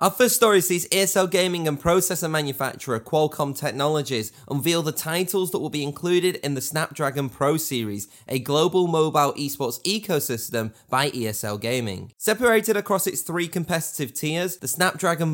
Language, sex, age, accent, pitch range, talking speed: English, male, 20-39, British, 130-170 Hz, 155 wpm